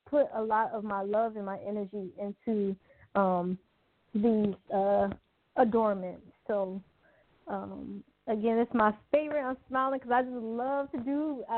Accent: American